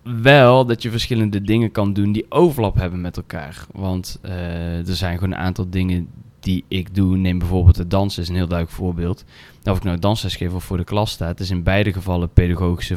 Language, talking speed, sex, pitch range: Dutch, 220 wpm, male, 85-100 Hz